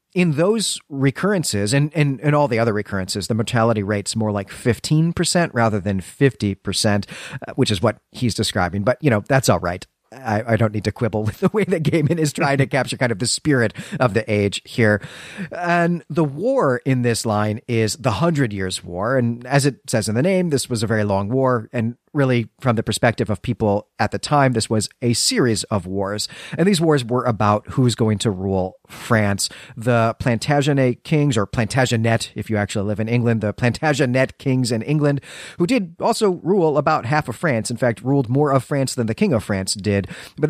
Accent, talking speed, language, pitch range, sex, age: American, 210 wpm, English, 110-145 Hz, male, 40-59